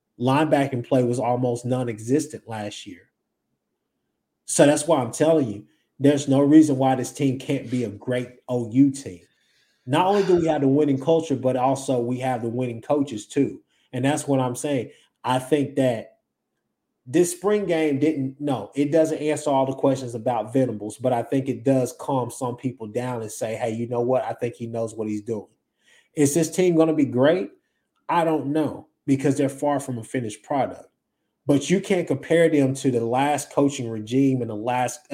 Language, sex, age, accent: English, male, 20-39, American